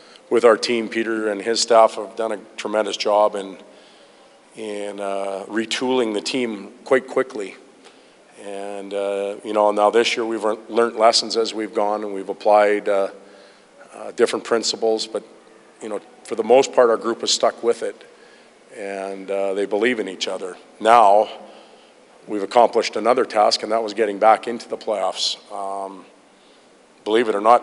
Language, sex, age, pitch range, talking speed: English, male, 40-59, 100-115 Hz, 170 wpm